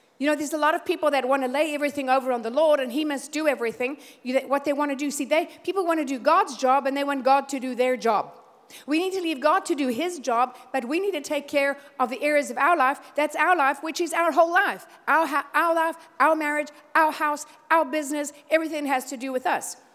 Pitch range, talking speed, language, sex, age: 270-315 Hz, 265 wpm, English, female, 60-79